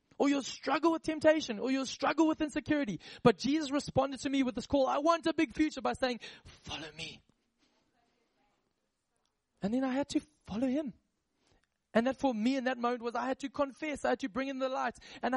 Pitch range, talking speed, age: 210-275 Hz, 210 wpm, 20-39